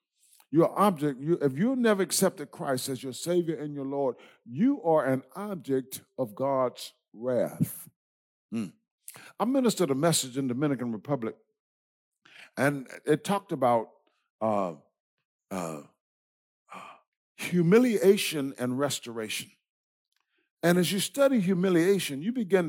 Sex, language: male, English